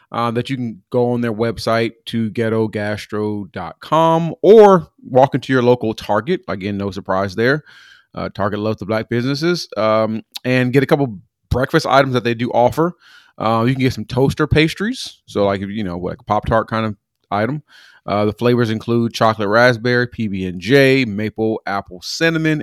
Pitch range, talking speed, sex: 100-125 Hz, 170 wpm, male